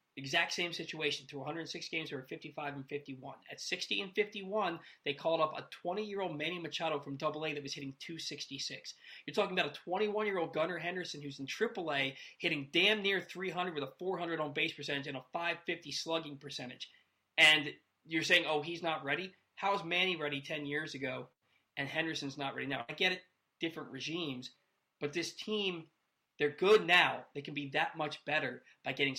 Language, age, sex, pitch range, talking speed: English, 20-39, male, 140-175 Hz, 195 wpm